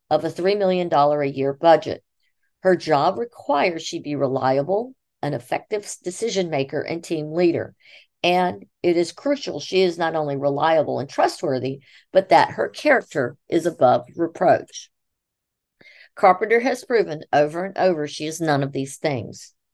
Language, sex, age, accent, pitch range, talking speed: English, female, 50-69, American, 150-195 Hz, 145 wpm